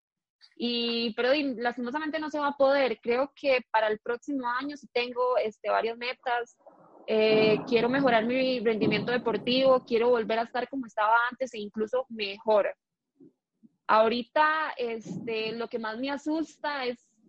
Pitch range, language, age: 225-270 Hz, Spanish, 20-39